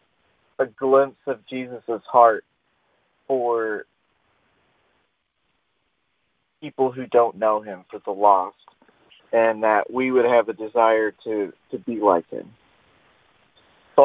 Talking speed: 115 wpm